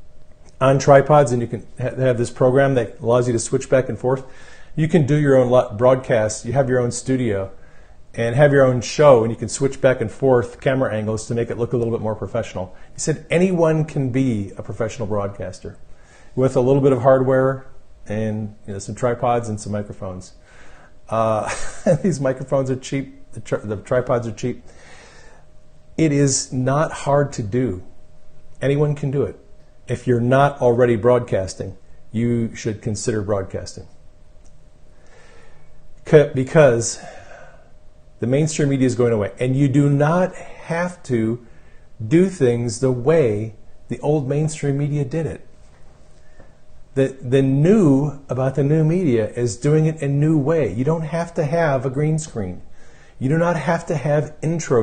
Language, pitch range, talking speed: English, 110-145 Hz, 165 wpm